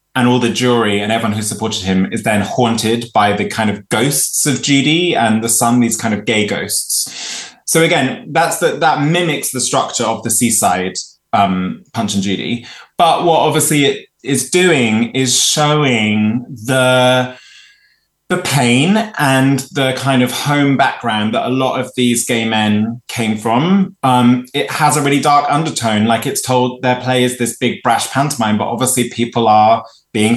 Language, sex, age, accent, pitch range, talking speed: English, male, 20-39, British, 115-140 Hz, 175 wpm